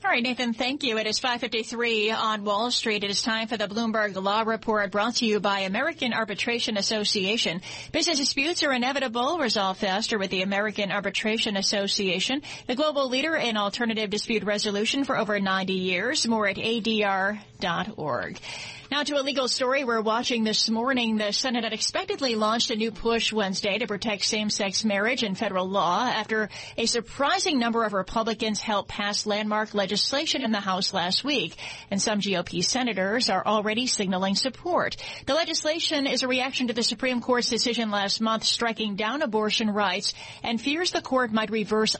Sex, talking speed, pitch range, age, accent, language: female, 175 wpm, 205-250 Hz, 30-49, American, English